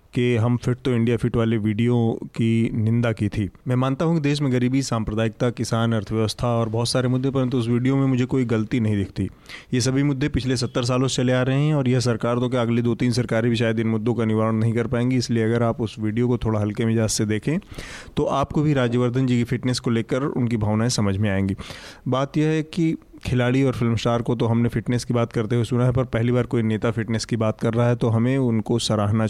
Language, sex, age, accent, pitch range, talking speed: Hindi, male, 30-49, native, 115-125 Hz, 250 wpm